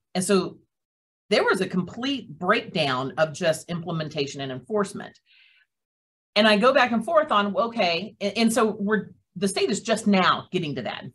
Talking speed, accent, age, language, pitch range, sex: 180 wpm, American, 40-59, English, 155-210 Hz, female